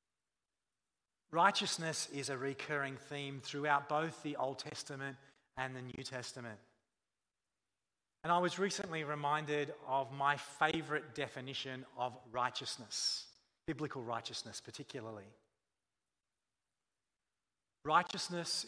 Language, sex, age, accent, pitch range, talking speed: English, male, 40-59, Australian, 110-140 Hz, 95 wpm